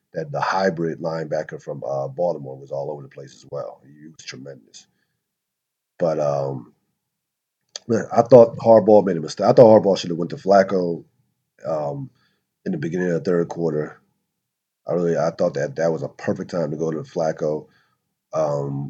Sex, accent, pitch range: male, American, 75-95 Hz